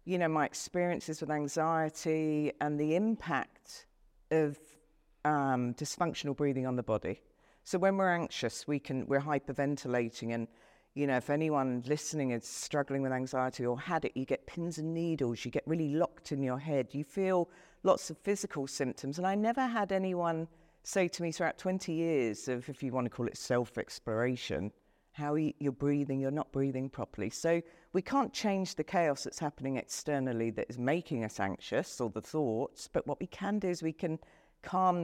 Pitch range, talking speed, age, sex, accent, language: 135-175 Hz, 185 wpm, 50-69, female, British, English